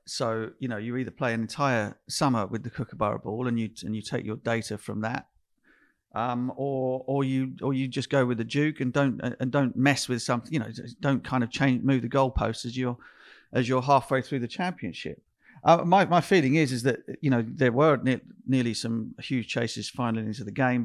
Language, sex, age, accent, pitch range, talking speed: English, male, 40-59, British, 115-140 Hz, 220 wpm